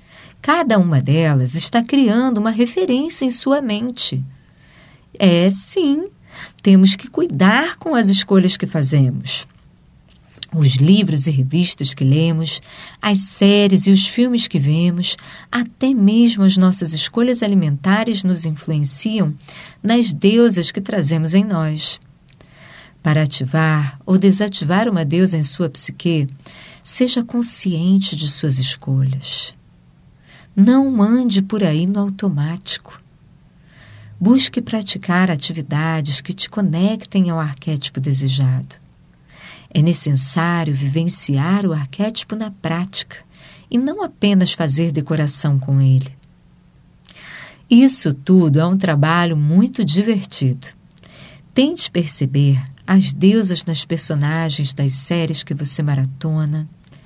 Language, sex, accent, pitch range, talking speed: Portuguese, female, Brazilian, 150-200 Hz, 115 wpm